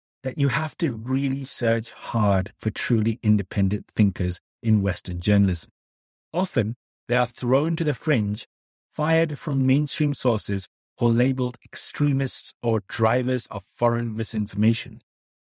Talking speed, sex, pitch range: 130 wpm, male, 105-135 Hz